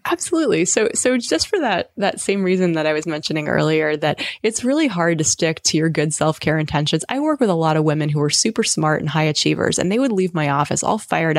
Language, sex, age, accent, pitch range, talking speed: English, female, 20-39, American, 150-185 Hz, 255 wpm